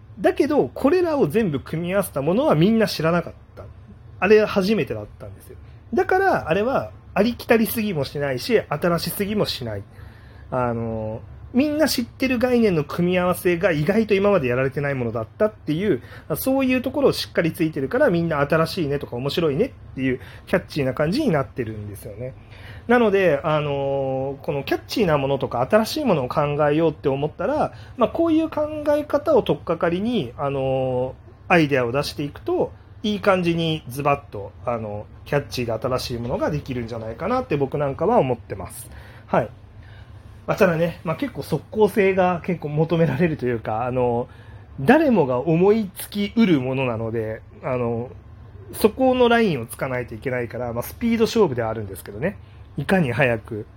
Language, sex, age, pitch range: Japanese, male, 30-49, 115-180 Hz